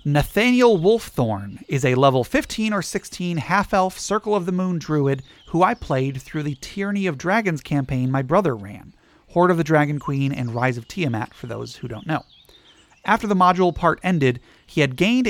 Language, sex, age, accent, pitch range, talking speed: English, male, 30-49, American, 130-185 Hz, 190 wpm